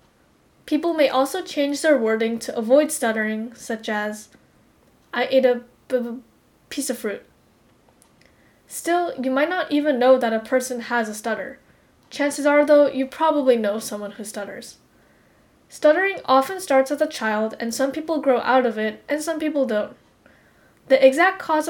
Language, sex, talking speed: English, female, 160 wpm